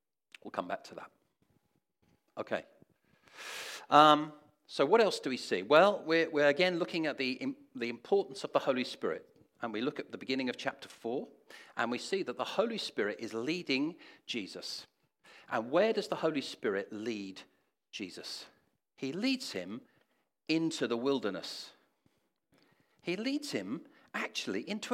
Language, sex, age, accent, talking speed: English, male, 50-69, British, 155 wpm